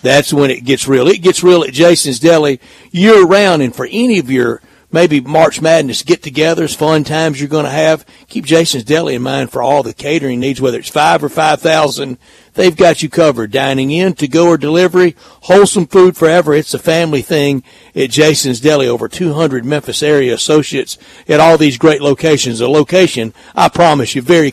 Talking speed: 190 wpm